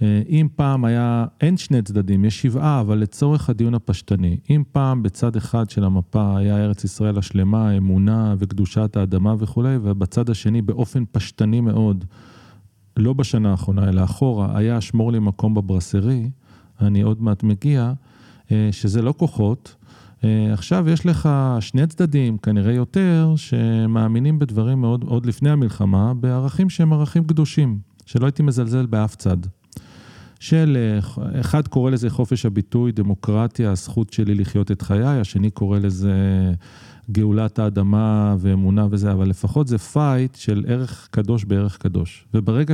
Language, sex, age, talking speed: Hebrew, male, 40-59, 140 wpm